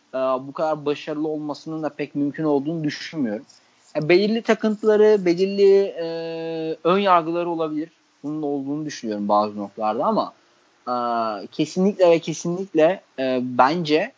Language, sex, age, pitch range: Turkish, male, 30-49, 130-175 Hz